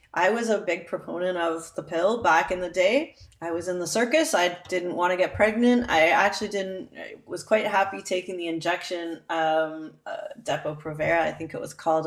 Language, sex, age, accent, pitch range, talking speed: English, female, 20-39, American, 175-220 Hz, 210 wpm